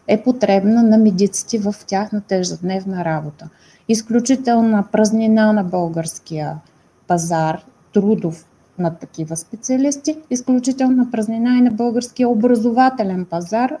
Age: 30-49